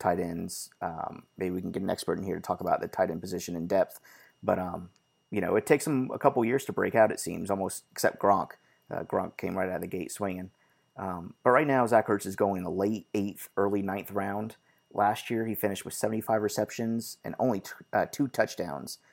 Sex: male